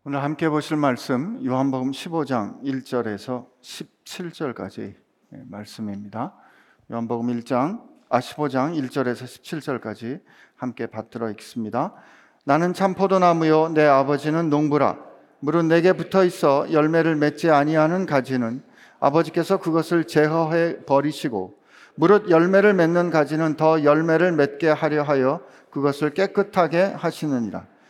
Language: Korean